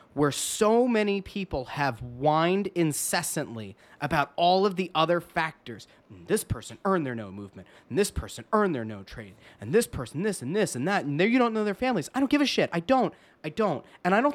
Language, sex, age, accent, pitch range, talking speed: English, male, 30-49, American, 130-185 Hz, 220 wpm